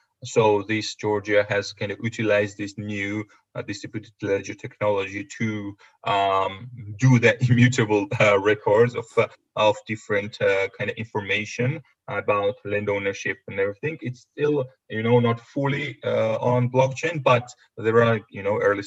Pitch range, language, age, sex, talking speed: 105-125 Hz, English, 30-49, male, 145 wpm